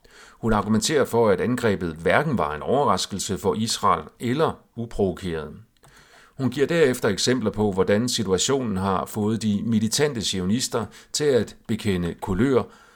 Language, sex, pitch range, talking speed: Danish, male, 95-115 Hz, 135 wpm